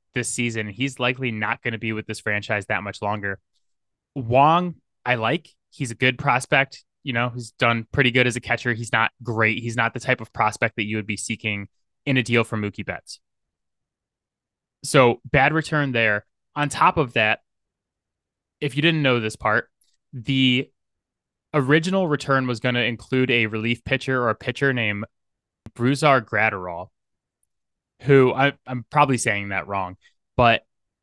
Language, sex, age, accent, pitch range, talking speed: English, male, 20-39, American, 105-130 Hz, 170 wpm